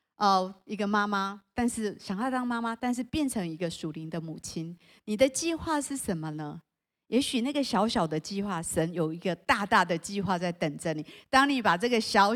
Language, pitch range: Chinese, 180-250 Hz